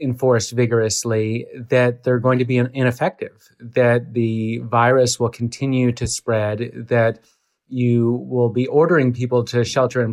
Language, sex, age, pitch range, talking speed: English, male, 30-49, 115-130 Hz, 140 wpm